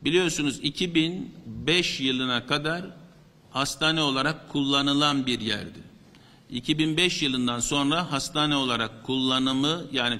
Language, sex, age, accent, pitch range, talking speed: Turkish, male, 50-69, native, 135-165 Hz, 95 wpm